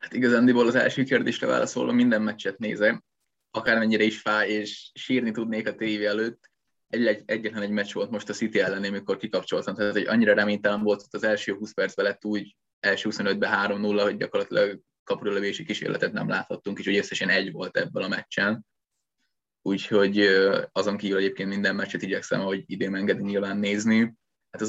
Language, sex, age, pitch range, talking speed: Hungarian, male, 20-39, 100-120 Hz, 175 wpm